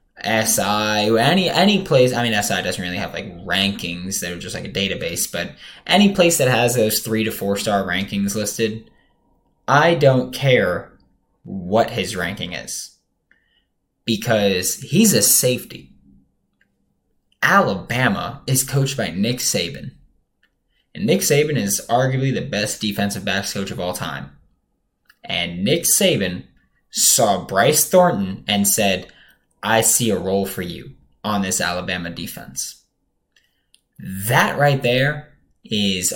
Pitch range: 100-140 Hz